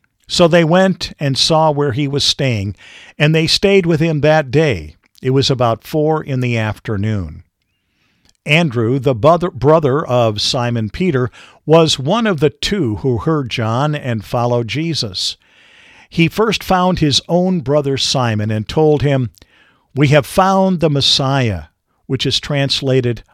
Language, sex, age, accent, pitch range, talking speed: English, male, 50-69, American, 115-155 Hz, 150 wpm